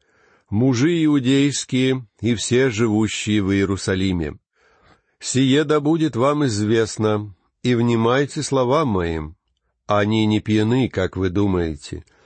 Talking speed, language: 110 wpm, Russian